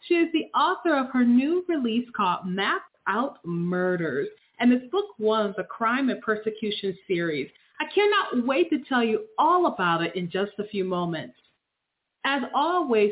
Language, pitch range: English, 210-285 Hz